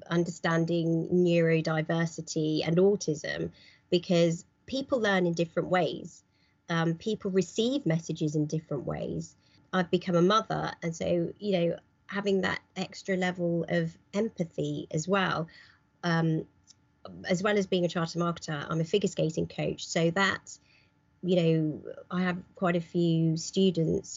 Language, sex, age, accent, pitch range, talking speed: English, female, 30-49, British, 165-195 Hz, 140 wpm